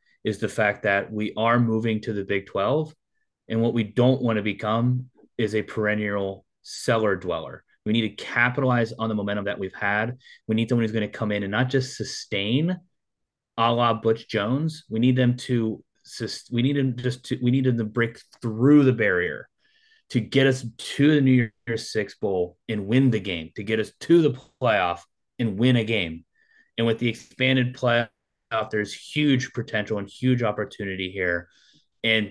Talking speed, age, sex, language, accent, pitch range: 190 wpm, 30-49, male, English, American, 105-125 Hz